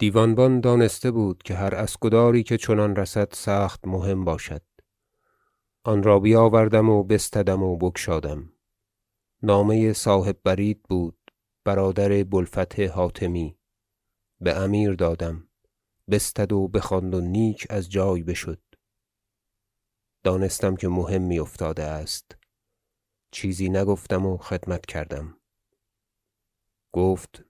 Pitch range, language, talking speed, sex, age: 95-105 Hz, Persian, 105 wpm, male, 30-49